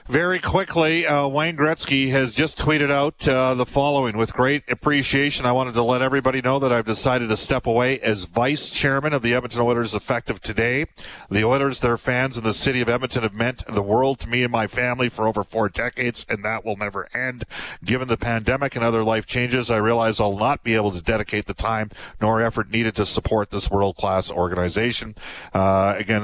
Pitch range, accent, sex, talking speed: 100-125 Hz, American, male, 205 wpm